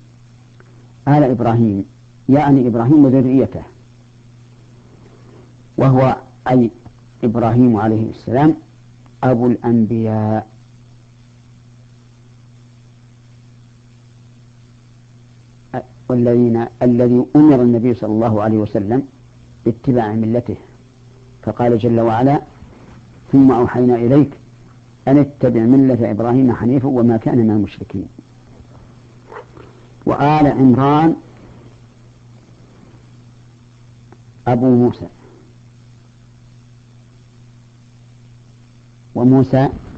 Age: 50-69